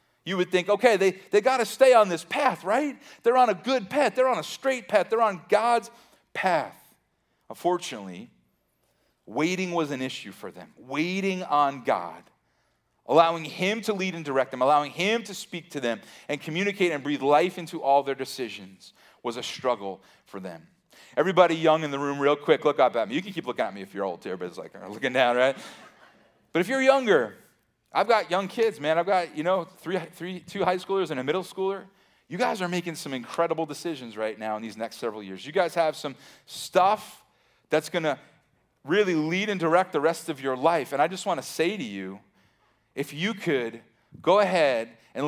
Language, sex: English, male